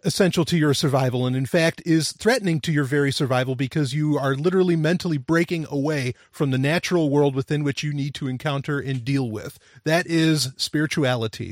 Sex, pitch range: male, 140-180 Hz